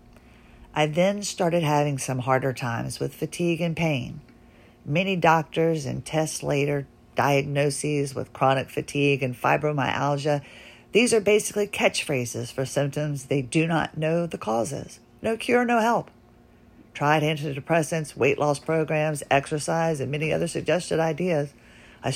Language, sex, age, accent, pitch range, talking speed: English, female, 50-69, American, 135-170 Hz, 135 wpm